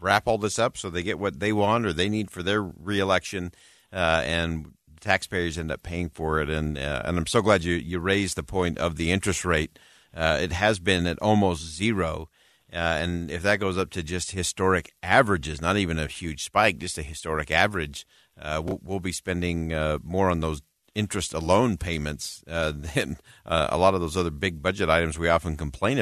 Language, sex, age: English, male, 50-69